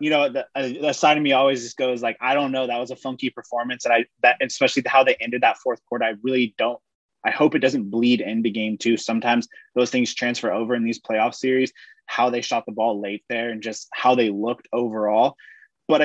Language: English